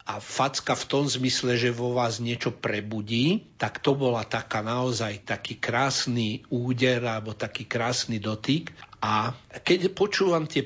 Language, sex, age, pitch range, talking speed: Slovak, male, 60-79, 115-130 Hz, 145 wpm